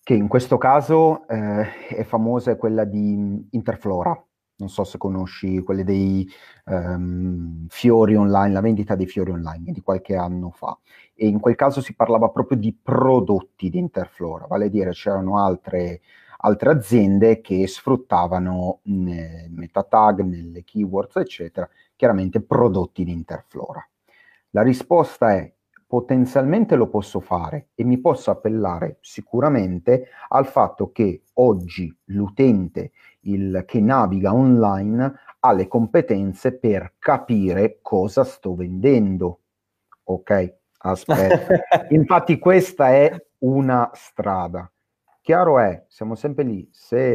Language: Italian